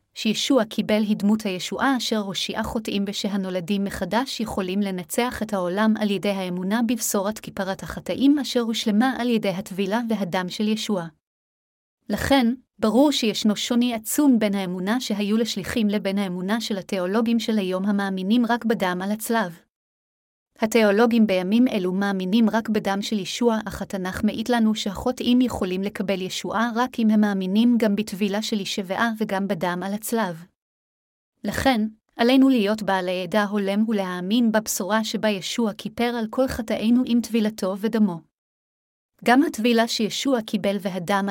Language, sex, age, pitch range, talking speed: Hebrew, female, 30-49, 195-230 Hz, 140 wpm